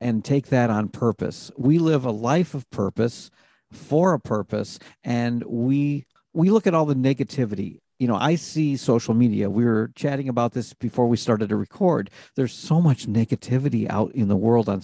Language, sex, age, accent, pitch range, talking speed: English, male, 50-69, American, 115-150 Hz, 190 wpm